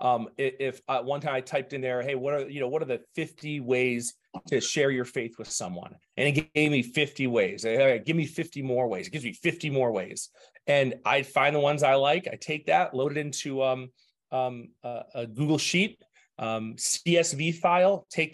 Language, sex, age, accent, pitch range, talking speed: English, male, 30-49, American, 130-170 Hz, 215 wpm